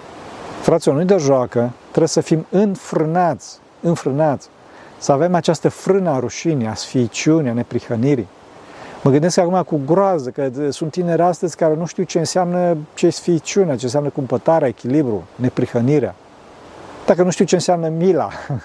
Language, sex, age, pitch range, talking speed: Romanian, male, 40-59, 140-180 Hz, 150 wpm